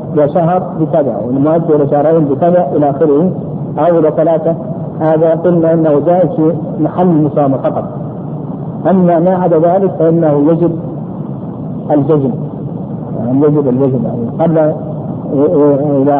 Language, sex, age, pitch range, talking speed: Arabic, male, 50-69, 150-175 Hz, 120 wpm